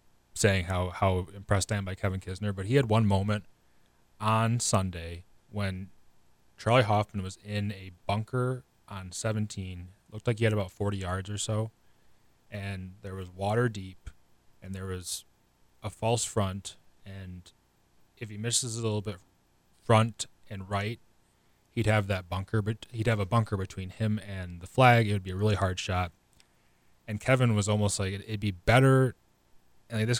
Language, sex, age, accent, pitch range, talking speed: English, male, 20-39, American, 90-110 Hz, 175 wpm